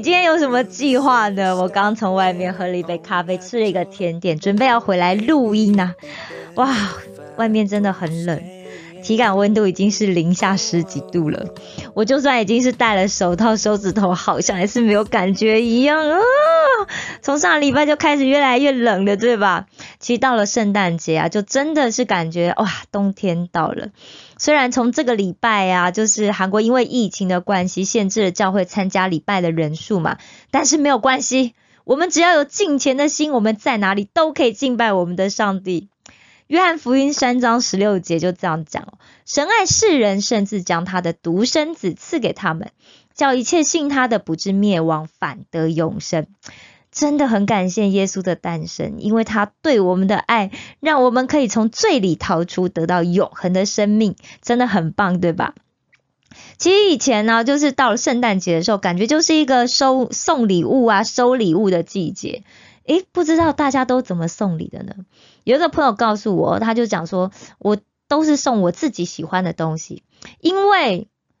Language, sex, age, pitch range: Korean, female, 20-39, 185-260 Hz